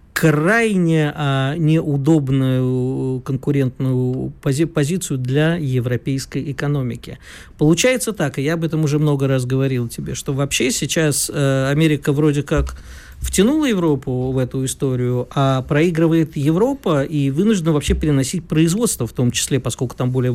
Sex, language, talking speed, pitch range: male, Russian, 125 wpm, 130-165 Hz